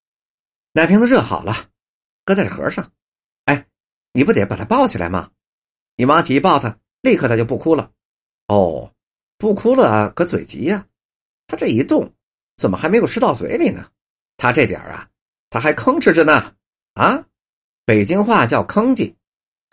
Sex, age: male, 50-69